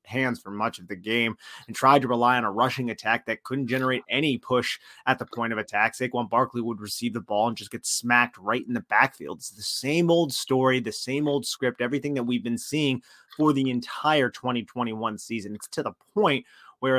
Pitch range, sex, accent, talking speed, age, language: 115-135 Hz, male, American, 220 wpm, 30-49, English